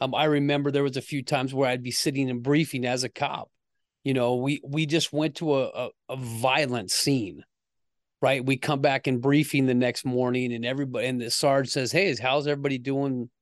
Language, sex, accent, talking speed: English, male, American, 215 wpm